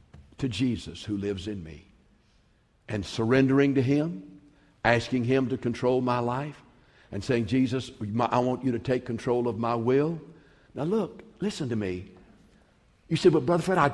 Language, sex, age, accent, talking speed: English, male, 60-79, American, 170 wpm